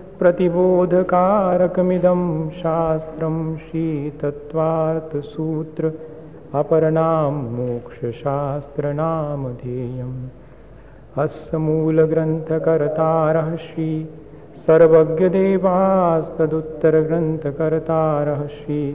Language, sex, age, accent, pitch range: Hindi, male, 50-69, native, 145-160 Hz